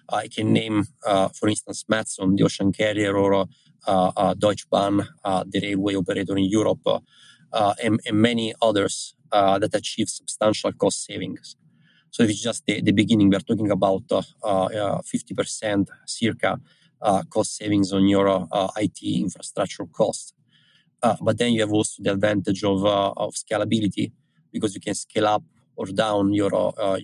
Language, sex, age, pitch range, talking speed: English, male, 20-39, 95-105 Hz, 170 wpm